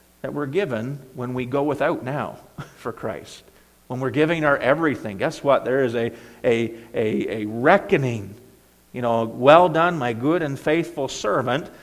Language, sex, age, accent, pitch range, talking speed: English, male, 50-69, American, 105-130 Hz, 165 wpm